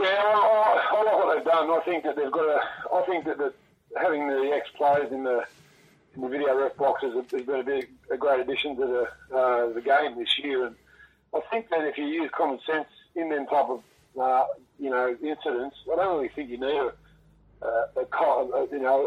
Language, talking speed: English, 215 wpm